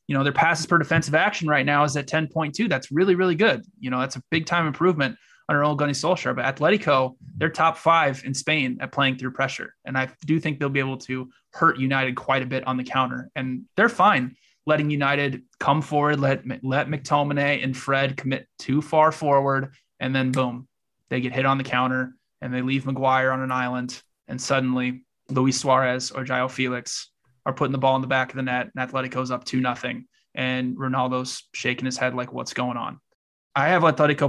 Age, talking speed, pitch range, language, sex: 20-39, 210 wpm, 130-145 Hz, English, male